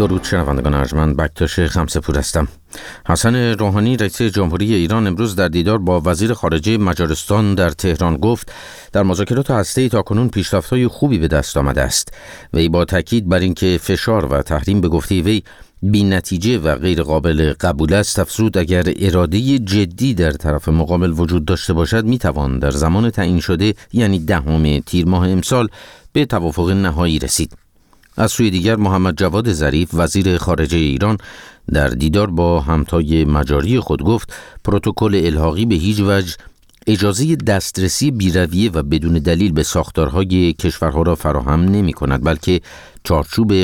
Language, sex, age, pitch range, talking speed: Persian, male, 50-69, 80-105 Hz, 155 wpm